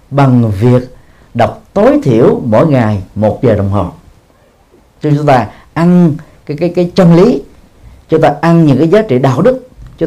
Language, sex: Vietnamese, male